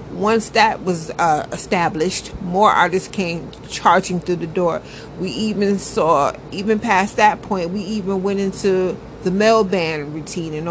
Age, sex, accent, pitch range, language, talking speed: 30-49, female, American, 175-215 Hz, English, 155 wpm